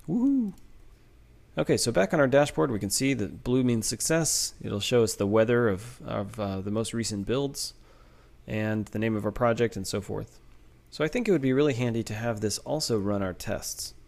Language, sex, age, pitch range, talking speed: English, male, 30-49, 95-125 Hz, 215 wpm